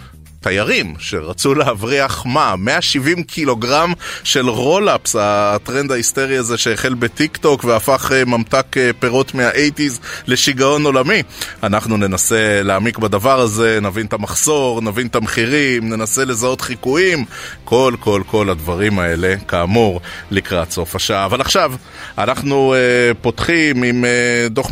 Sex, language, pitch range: male, Hebrew, 110-135 Hz